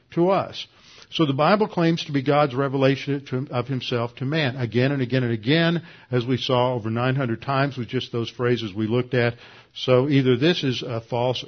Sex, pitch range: male, 120-150 Hz